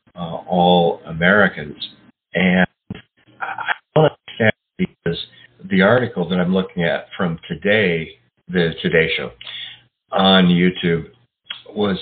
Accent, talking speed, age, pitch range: American, 105 wpm, 50-69, 85-100 Hz